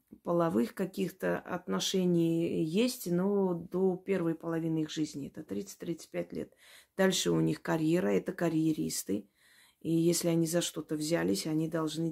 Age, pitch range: 30-49, 155-190 Hz